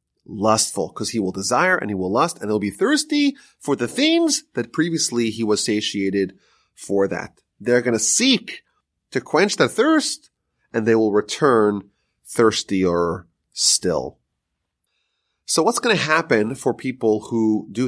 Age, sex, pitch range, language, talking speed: 30-49, male, 105-165 Hz, English, 155 wpm